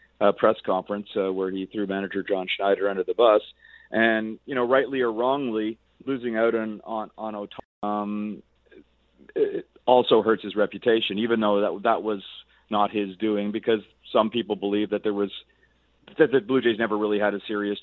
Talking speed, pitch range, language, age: 185 wpm, 105-120 Hz, English, 40-59